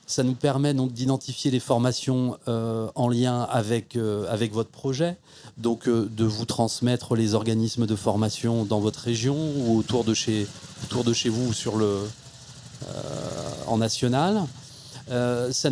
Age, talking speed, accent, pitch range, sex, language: 30-49, 165 wpm, French, 115-135 Hz, male, French